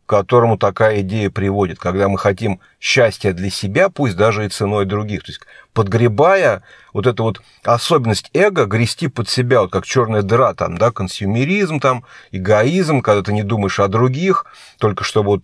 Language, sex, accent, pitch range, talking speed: Russian, male, native, 105-130 Hz, 175 wpm